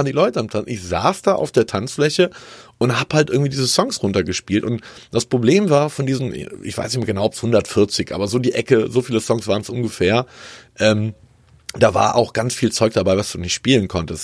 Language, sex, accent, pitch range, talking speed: German, male, German, 100-130 Hz, 230 wpm